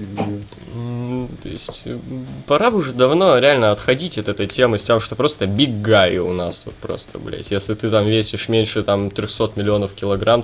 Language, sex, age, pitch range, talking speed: Russian, male, 20-39, 95-110 Hz, 180 wpm